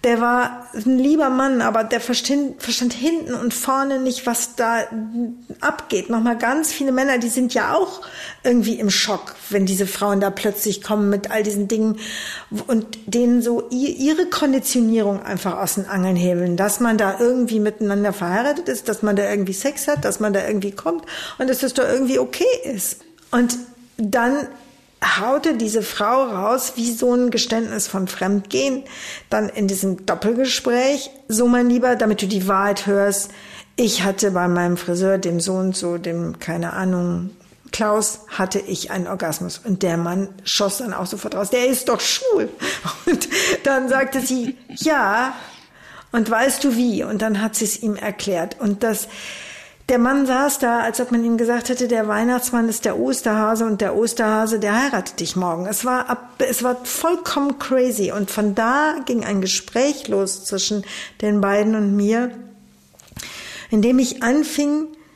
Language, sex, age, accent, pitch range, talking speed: German, female, 50-69, German, 200-255 Hz, 170 wpm